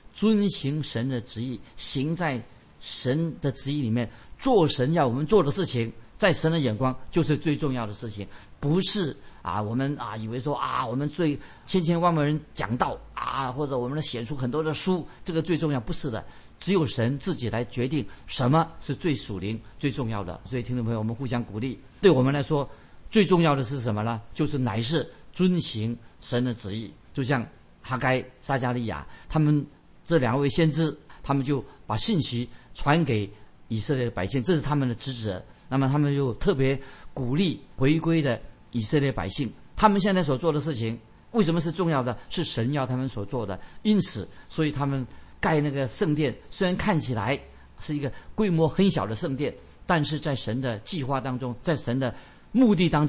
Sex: male